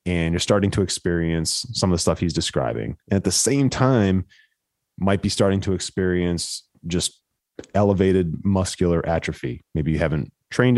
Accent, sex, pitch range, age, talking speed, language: American, male, 80-100 Hz, 30-49, 160 wpm, English